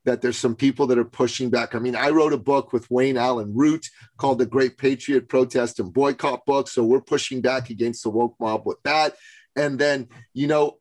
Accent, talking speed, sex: American, 220 wpm, male